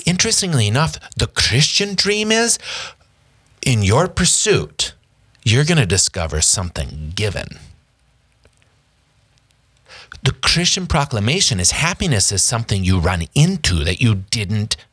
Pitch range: 100-140 Hz